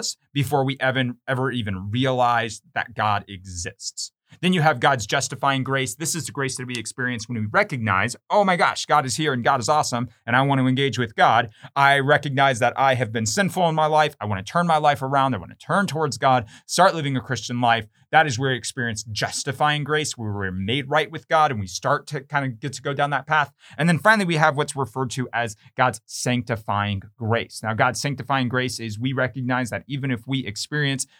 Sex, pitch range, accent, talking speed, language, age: male, 110-140 Hz, American, 230 wpm, English, 30-49